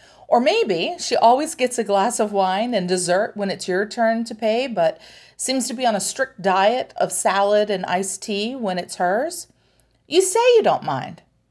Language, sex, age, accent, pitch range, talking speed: English, female, 40-59, American, 190-265 Hz, 200 wpm